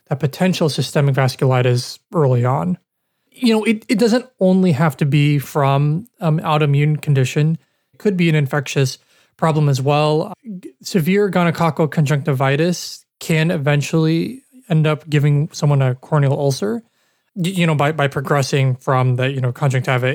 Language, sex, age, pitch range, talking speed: English, male, 20-39, 140-170 Hz, 150 wpm